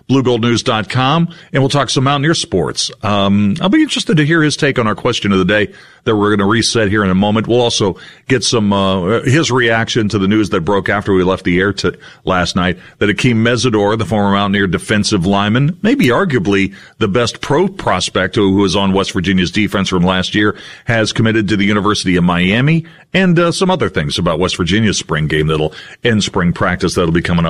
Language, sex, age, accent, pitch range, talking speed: English, male, 40-59, American, 100-130 Hz, 210 wpm